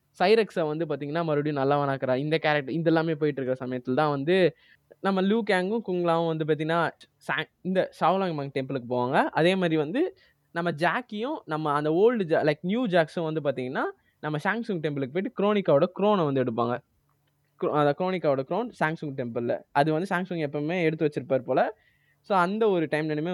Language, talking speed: Tamil, 160 wpm